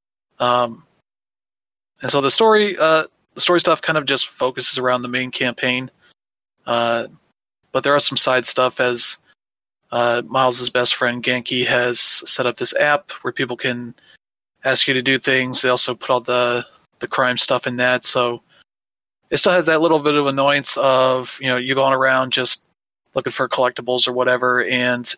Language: English